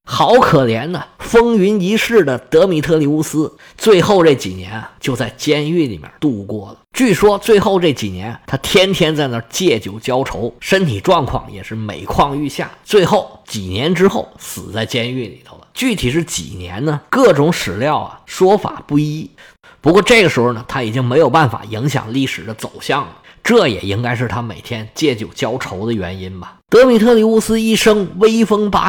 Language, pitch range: Chinese, 115-190 Hz